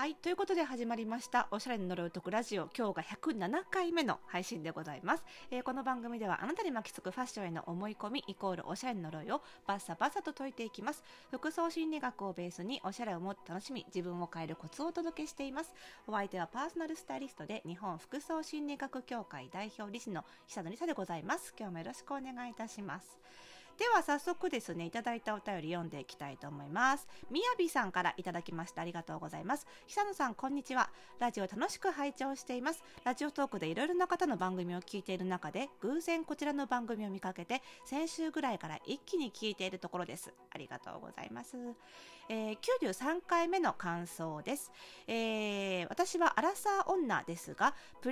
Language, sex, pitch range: Japanese, female, 185-310 Hz